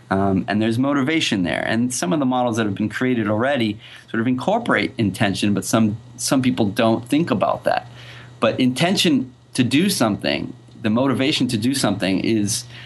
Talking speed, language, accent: 175 wpm, English, American